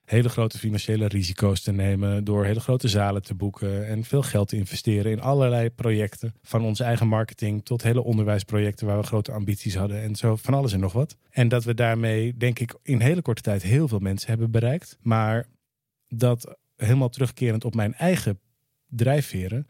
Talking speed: 190 wpm